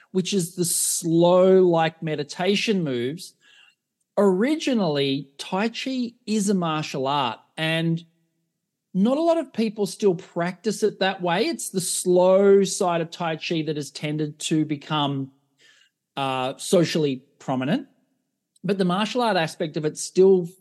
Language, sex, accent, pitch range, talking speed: English, male, Australian, 150-195 Hz, 140 wpm